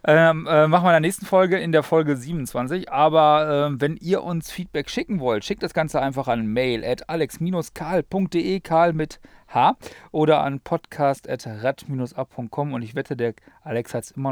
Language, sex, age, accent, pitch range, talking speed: German, male, 40-59, German, 120-175 Hz, 185 wpm